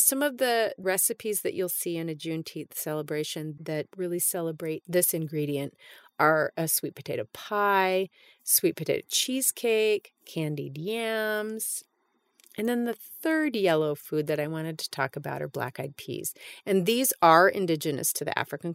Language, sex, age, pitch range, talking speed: English, female, 30-49, 155-210 Hz, 155 wpm